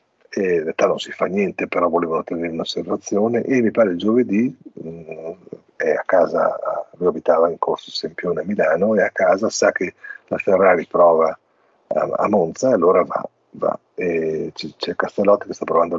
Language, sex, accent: Italian, male, native